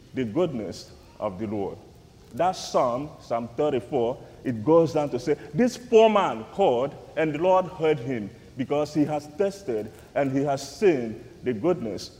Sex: male